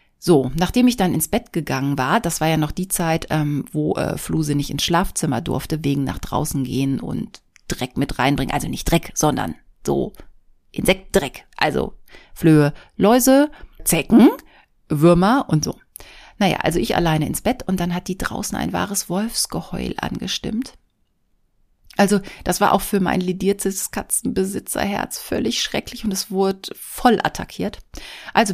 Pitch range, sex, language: 165-230 Hz, female, German